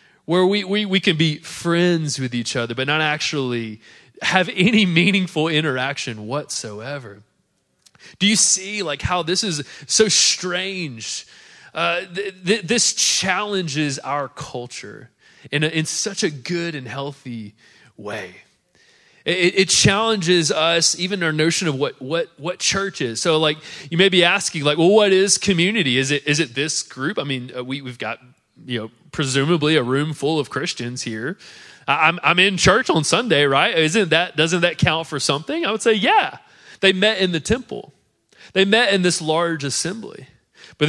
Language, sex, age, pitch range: English, male, 20-39, 140-185 Hz